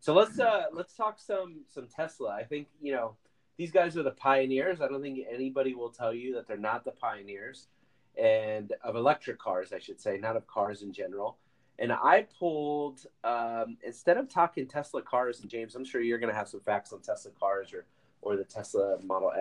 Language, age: English, 30-49